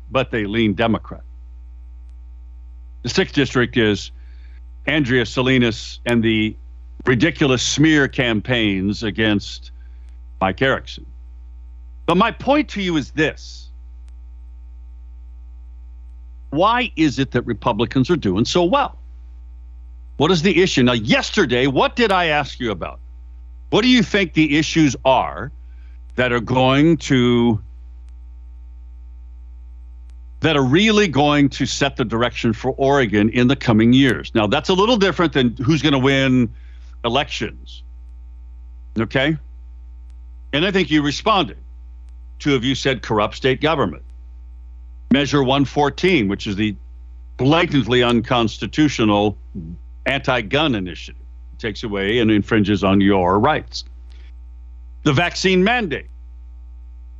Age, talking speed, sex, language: 60-79, 120 wpm, male, English